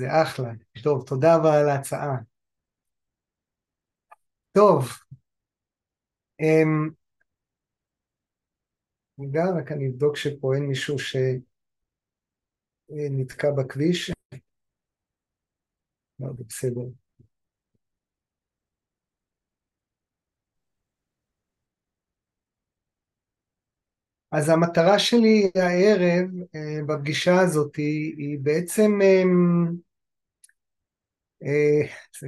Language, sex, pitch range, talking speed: Hebrew, male, 135-175 Hz, 55 wpm